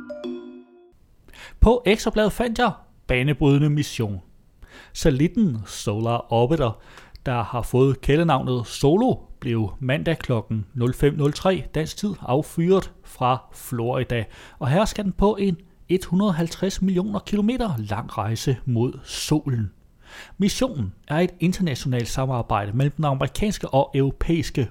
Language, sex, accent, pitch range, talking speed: Danish, male, native, 115-170 Hz, 110 wpm